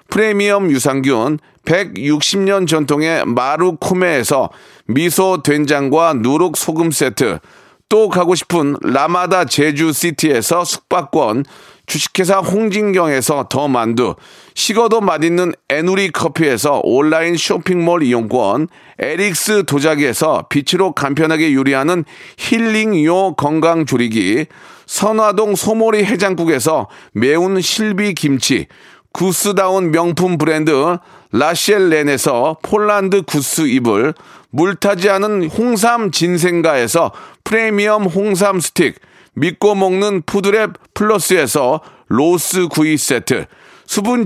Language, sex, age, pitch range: Korean, male, 40-59, 155-205 Hz